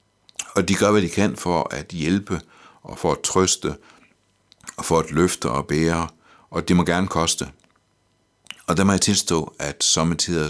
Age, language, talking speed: 60-79, Danish, 175 wpm